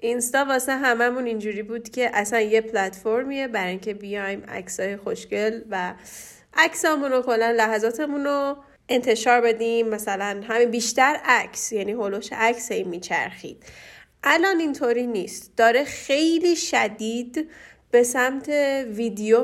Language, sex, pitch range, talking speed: Persian, female, 210-255 Hz, 115 wpm